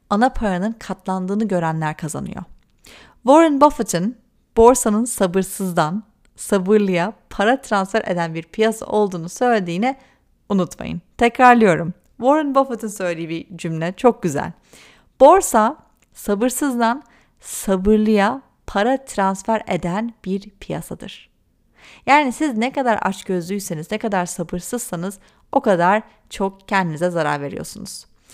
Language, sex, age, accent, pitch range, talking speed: Turkish, female, 40-59, native, 185-250 Hz, 100 wpm